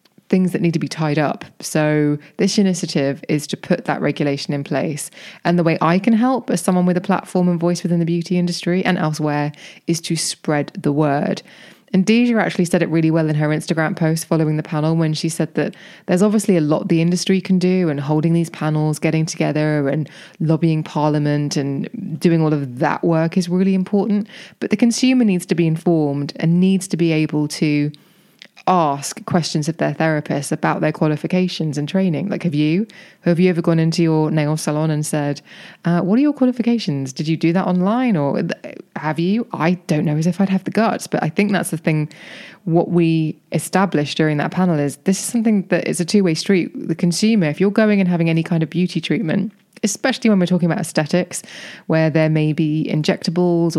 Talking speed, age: 210 wpm, 20-39